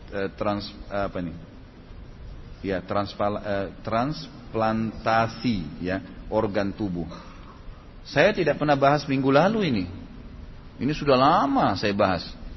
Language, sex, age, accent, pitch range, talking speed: Indonesian, male, 30-49, native, 105-160 Hz, 105 wpm